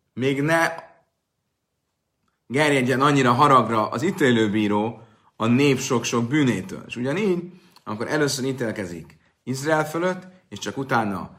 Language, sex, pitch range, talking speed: Hungarian, male, 105-135 Hz, 110 wpm